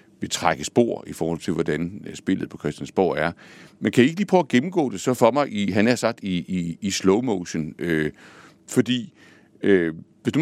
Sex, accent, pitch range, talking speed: male, native, 85-120 Hz, 200 wpm